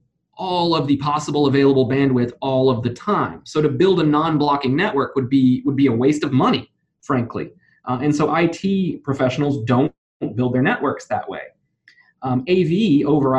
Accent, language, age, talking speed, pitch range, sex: American, English, 20-39, 175 wpm, 135-185 Hz, male